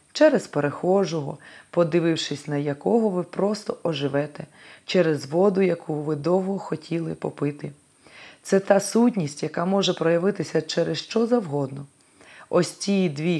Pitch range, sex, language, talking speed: 145-200 Hz, female, Ukrainian, 120 wpm